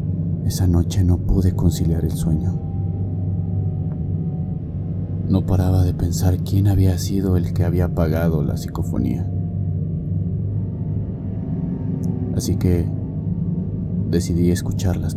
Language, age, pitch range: Spanish, 30-49, 85-95 Hz